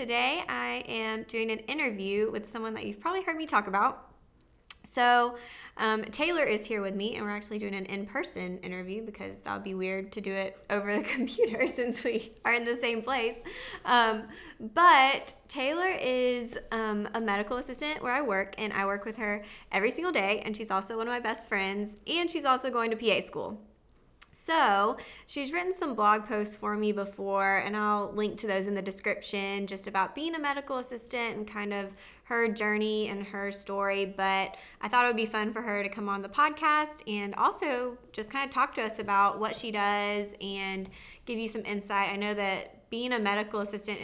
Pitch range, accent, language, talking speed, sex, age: 200-245 Hz, American, English, 205 wpm, female, 20-39